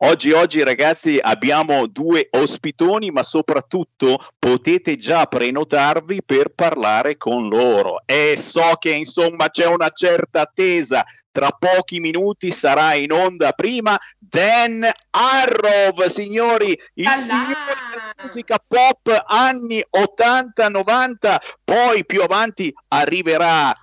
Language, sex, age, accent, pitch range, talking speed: Italian, male, 50-69, native, 170-280 Hz, 110 wpm